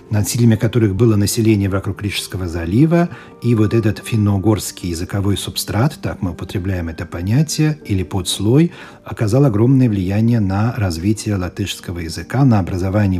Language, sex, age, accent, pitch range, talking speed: Russian, male, 40-59, native, 100-130 Hz, 135 wpm